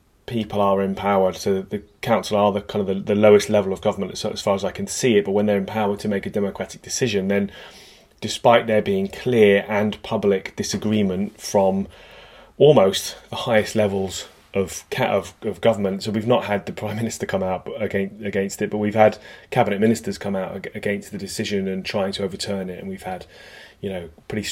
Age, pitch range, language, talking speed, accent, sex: 30-49, 95-110 Hz, English, 200 wpm, British, male